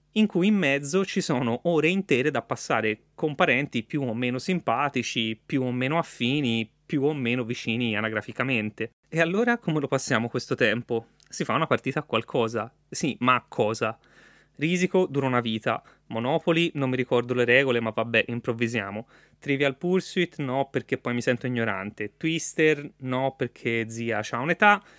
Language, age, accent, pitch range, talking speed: Italian, 30-49, native, 120-155 Hz, 165 wpm